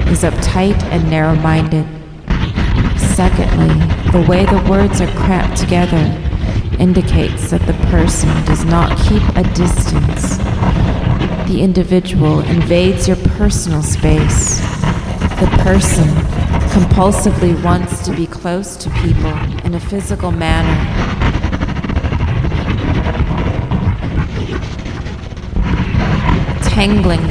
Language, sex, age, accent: English, female, 30-49, American